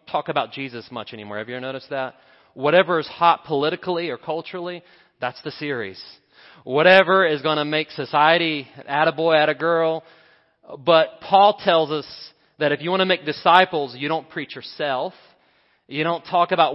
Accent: American